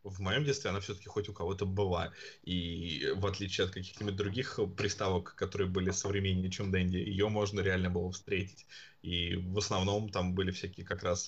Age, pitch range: 20-39, 95-110 Hz